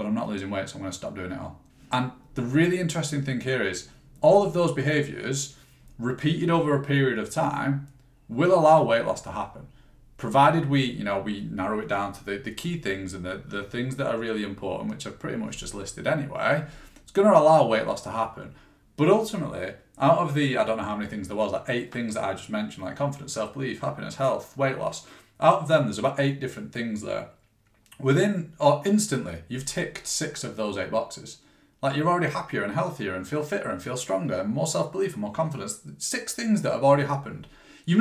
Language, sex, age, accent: English, male, 30-49, British